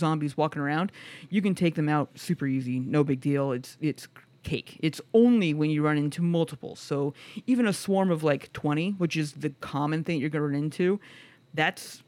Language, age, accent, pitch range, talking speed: English, 30-49, American, 145-170 Hz, 200 wpm